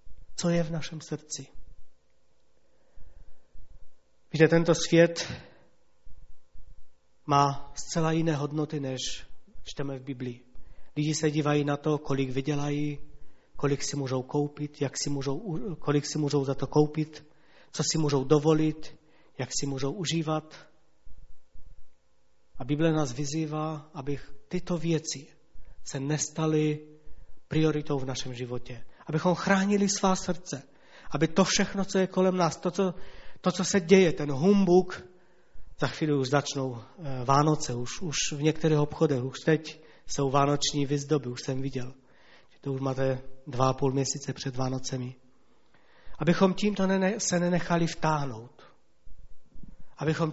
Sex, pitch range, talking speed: male, 135-165 Hz, 130 wpm